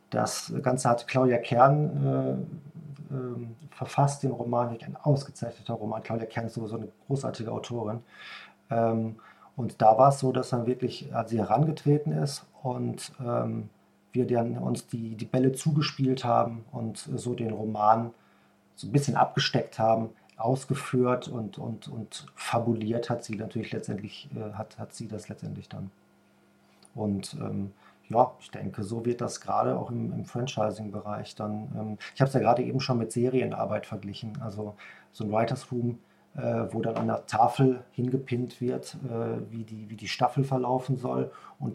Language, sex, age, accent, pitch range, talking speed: German, male, 40-59, German, 110-130 Hz, 165 wpm